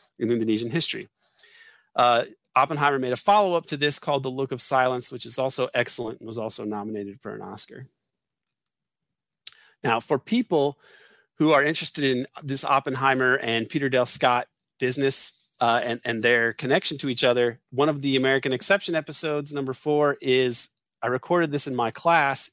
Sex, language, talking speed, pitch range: male, English, 170 wpm, 120-145 Hz